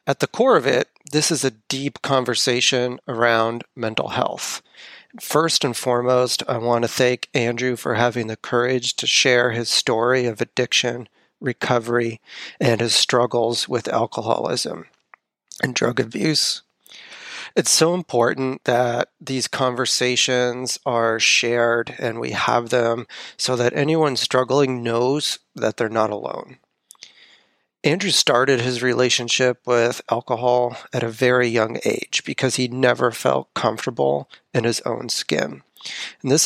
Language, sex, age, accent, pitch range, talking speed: English, male, 30-49, American, 120-130 Hz, 135 wpm